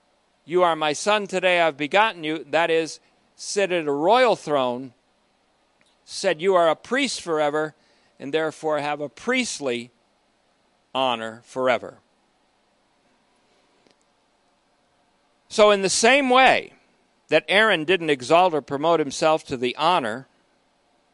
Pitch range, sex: 130-185 Hz, male